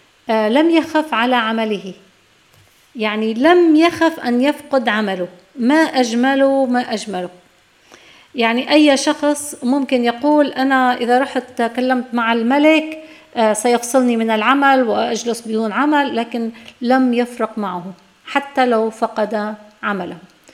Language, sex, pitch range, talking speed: Arabic, female, 215-270 Hz, 115 wpm